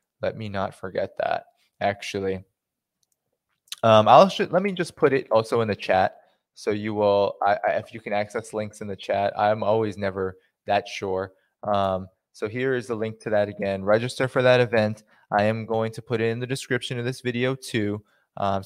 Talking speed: 205 wpm